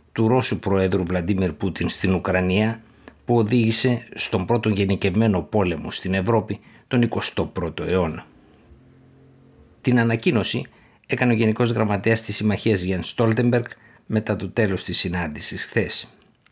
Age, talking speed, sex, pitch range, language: 50-69, 125 wpm, male, 95-115 Hz, Greek